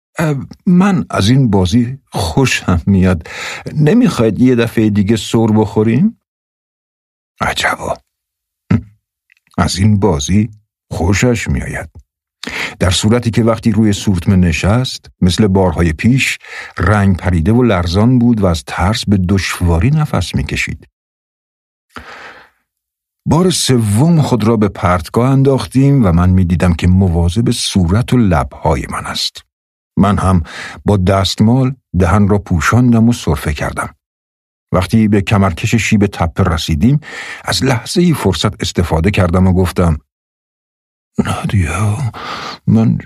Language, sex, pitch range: Persian, male, 90-120 Hz